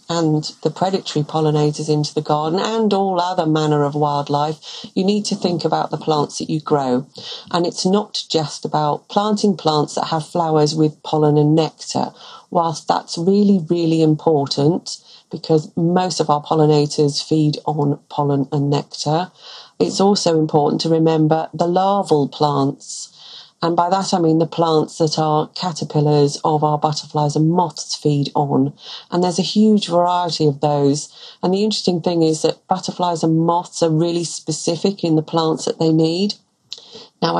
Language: English